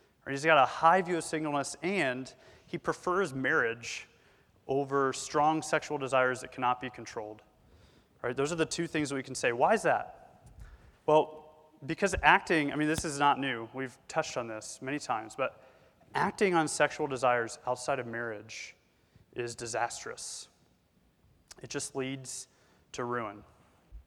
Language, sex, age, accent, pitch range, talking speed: English, male, 30-49, American, 125-155 Hz, 155 wpm